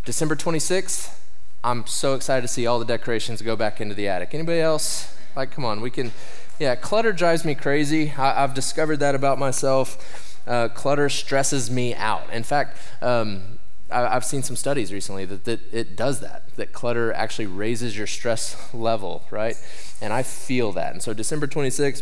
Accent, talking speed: American, 180 wpm